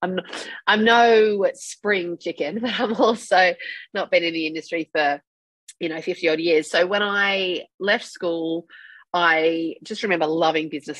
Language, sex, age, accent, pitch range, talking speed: English, female, 30-49, Australian, 155-180 Hz, 160 wpm